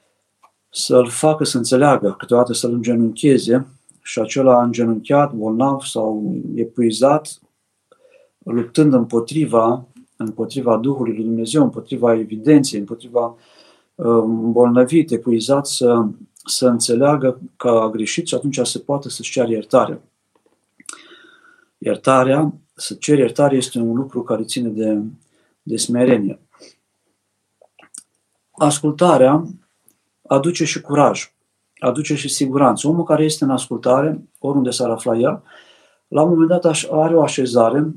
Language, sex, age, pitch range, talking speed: Romanian, male, 50-69, 120-155 Hz, 115 wpm